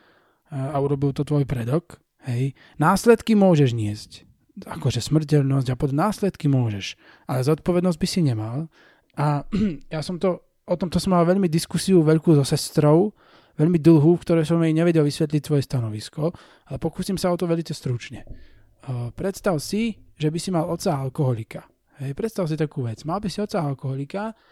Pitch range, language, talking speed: 140-185 Hz, Slovak, 170 wpm